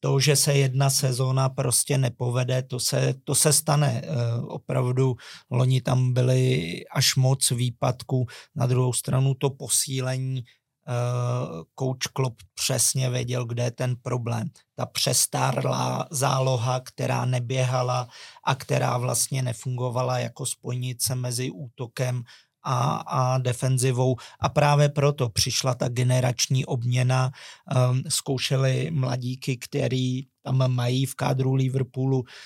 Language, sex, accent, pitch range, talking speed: Czech, male, native, 125-135 Hz, 120 wpm